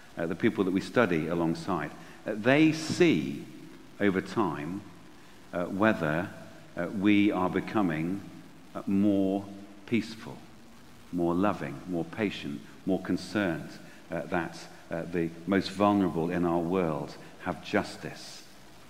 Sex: male